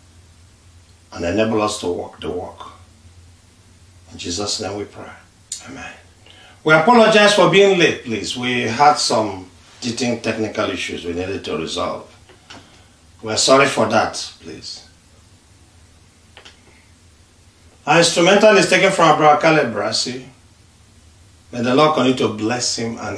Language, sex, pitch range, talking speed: English, male, 90-150 Hz, 130 wpm